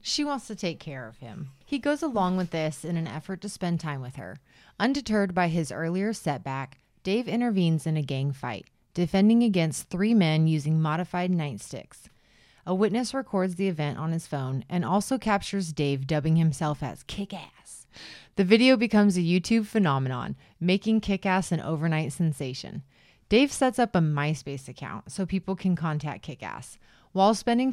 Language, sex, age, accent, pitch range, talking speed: English, female, 30-49, American, 150-200 Hz, 170 wpm